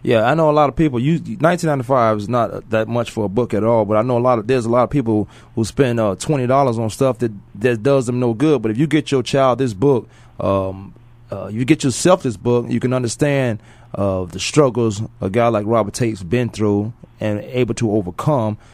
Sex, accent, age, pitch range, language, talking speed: male, American, 30-49, 110-130 Hz, English, 235 wpm